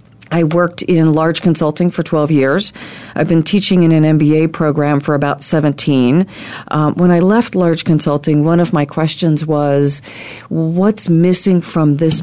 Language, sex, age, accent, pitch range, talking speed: English, female, 40-59, American, 145-170 Hz, 160 wpm